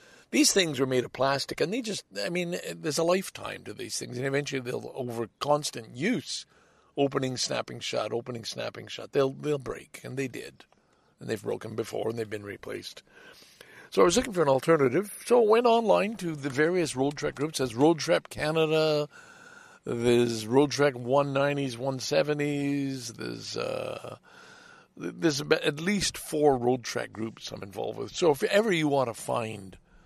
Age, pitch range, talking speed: 60-79, 120-165 Hz, 175 wpm